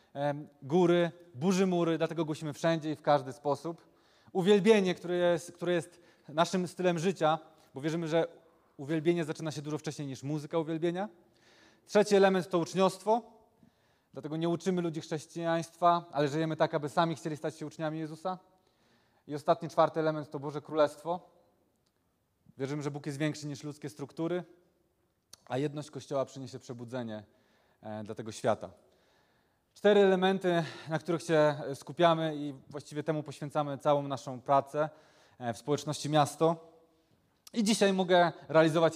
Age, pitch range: 20-39, 140-175 Hz